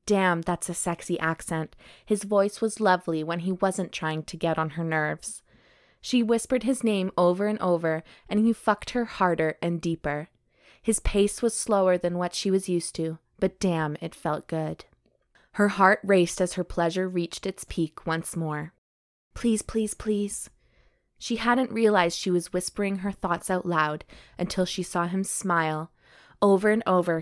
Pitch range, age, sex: 165-200 Hz, 20-39, female